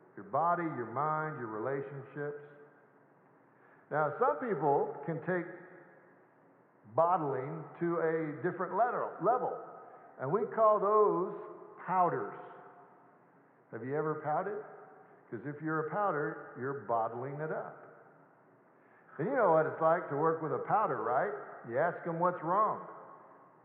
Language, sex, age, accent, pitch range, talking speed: English, male, 60-79, American, 135-180 Hz, 130 wpm